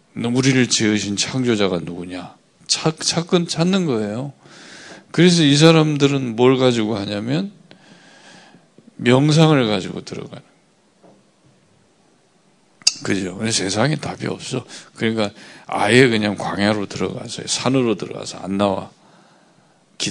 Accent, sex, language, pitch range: Korean, male, Japanese, 100-165 Hz